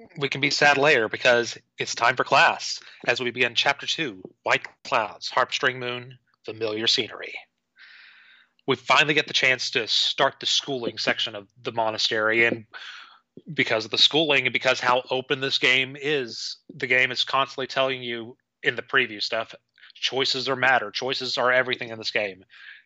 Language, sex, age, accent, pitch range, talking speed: English, male, 30-49, American, 115-135 Hz, 170 wpm